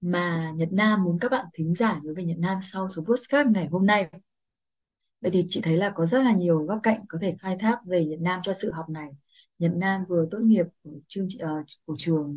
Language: Vietnamese